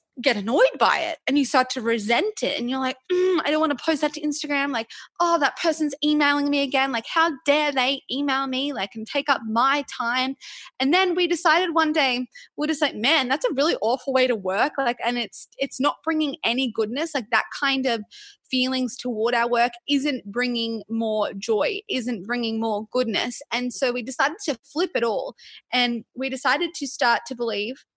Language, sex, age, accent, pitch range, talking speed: English, female, 20-39, Australian, 235-310 Hz, 210 wpm